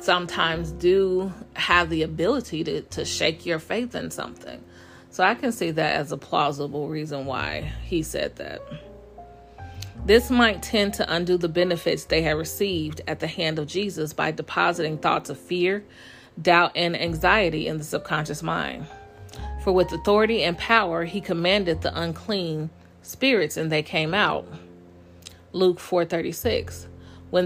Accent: American